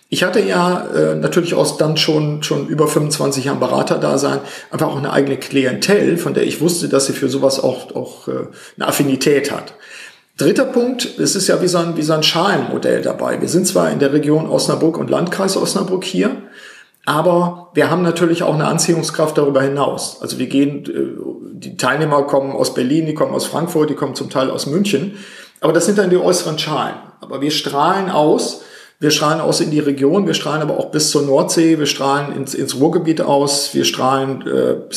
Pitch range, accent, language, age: 140-170 Hz, German, German, 50-69